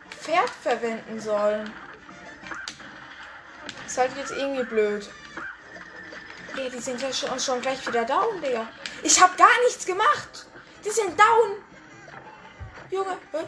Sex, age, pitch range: female, 10-29, 245-335 Hz